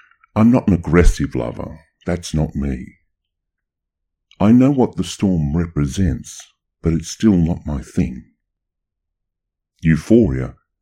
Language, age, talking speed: English, 50-69, 115 wpm